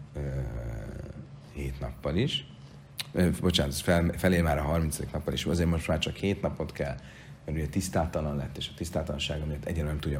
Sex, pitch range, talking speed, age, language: male, 75-95 Hz, 175 wpm, 40-59, Hungarian